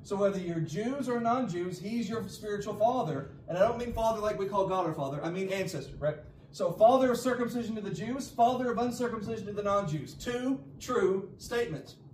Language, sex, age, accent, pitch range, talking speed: English, male, 40-59, American, 185-265 Hz, 205 wpm